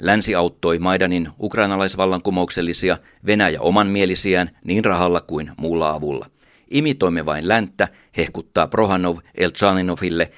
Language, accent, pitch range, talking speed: Finnish, native, 85-105 Hz, 105 wpm